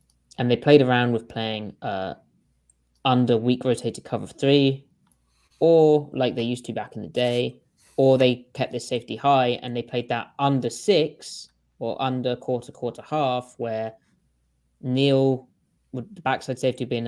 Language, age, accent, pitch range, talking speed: English, 20-39, British, 110-130 Hz, 165 wpm